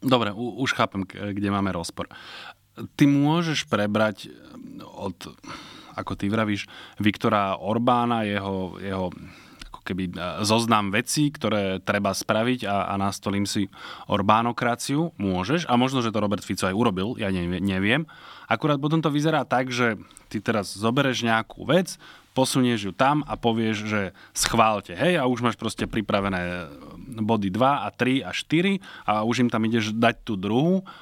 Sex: male